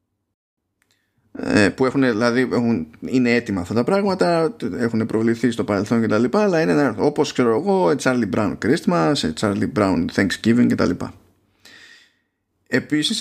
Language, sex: Greek, male